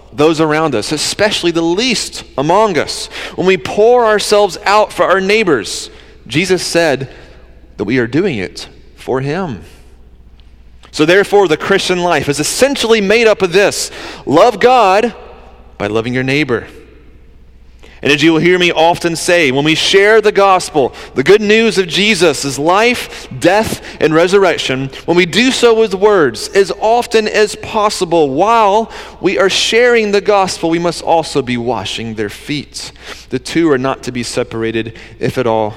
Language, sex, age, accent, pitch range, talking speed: English, male, 30-49, American, 115-185 Hz, 165 wpm